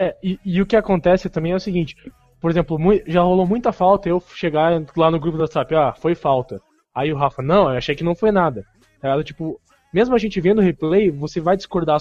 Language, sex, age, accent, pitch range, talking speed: Portuguese, male, 20-39, Brazilian, 150-185 Hz, 235 wpm